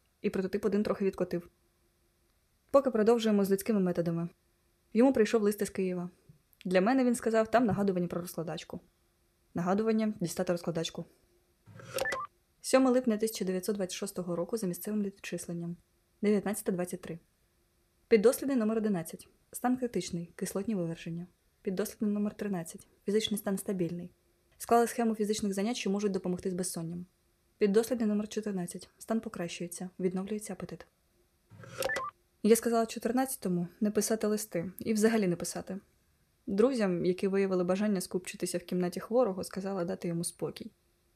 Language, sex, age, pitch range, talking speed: Ukrainian, female, 20-39, 180-215 Hz, 125 wpm